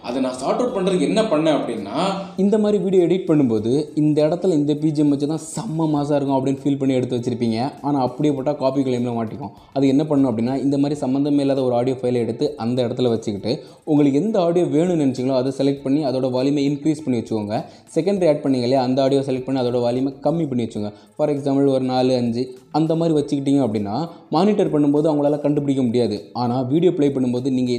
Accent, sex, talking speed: native, male, 195 wpm